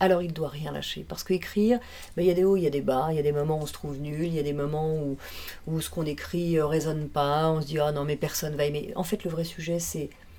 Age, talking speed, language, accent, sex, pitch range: 40-59, 350 wpm, French, French, female, 155-190 Hz